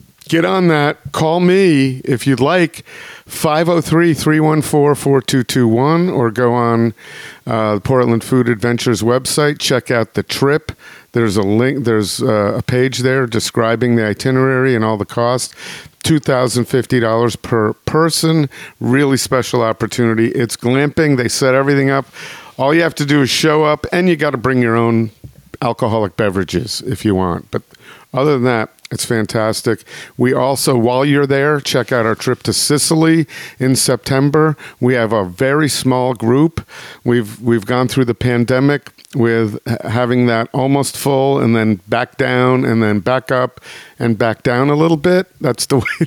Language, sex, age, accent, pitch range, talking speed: English, male, 50-69, American, 115-140 Hz, 160 wpm